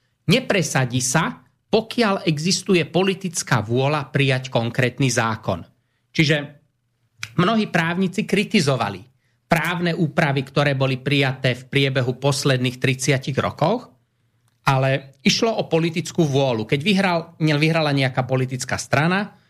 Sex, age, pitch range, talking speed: male, 30-49, 125-170 Hz, 105 wpm